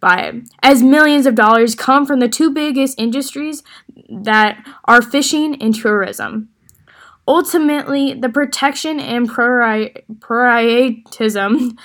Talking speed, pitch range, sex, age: 100 wpm, 235-290 Hz, female, 10-29